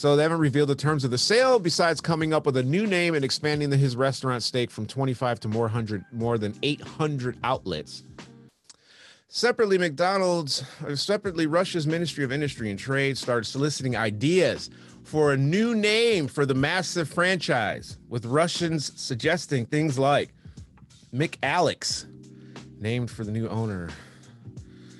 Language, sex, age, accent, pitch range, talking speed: English, male, 30-49, American, 110-150 Hz, 150 wpm